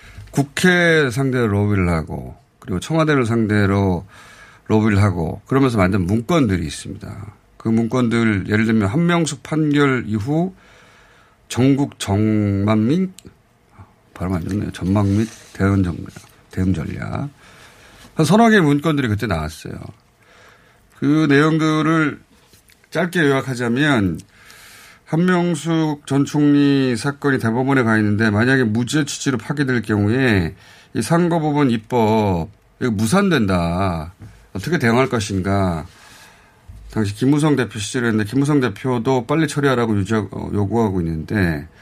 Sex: male